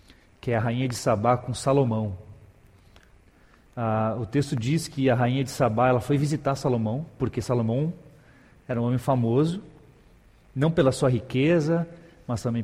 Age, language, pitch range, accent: 40-59, Portuguese, 115-155 Hz, Brazilian